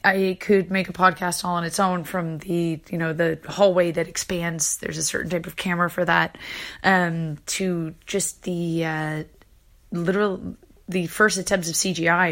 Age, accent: 30-49, American